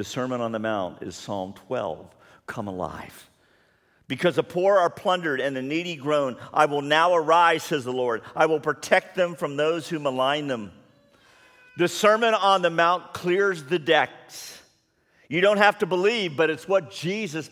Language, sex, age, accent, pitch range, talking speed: English, male, 50-69, American, 110-185 Hz, 180 wpm